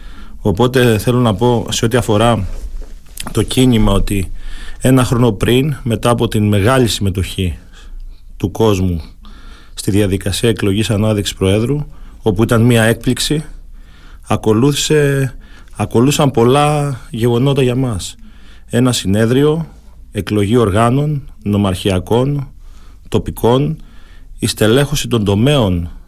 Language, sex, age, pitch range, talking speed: Greek, male, 40-59, 95-125 Hz, 105 wpm